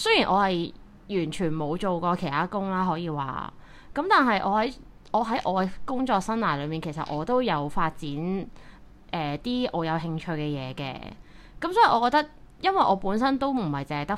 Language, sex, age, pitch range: Chinese, female, 20-39, 160-215 Hz